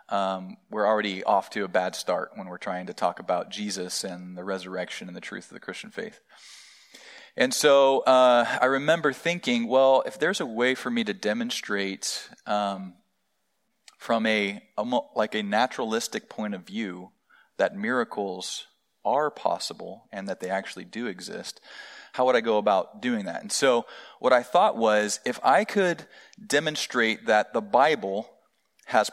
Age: 30-49